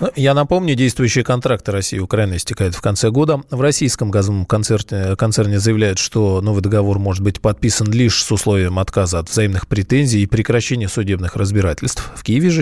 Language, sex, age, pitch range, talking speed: Russian, male, 20-39, 100-130 Hz, 170 wpm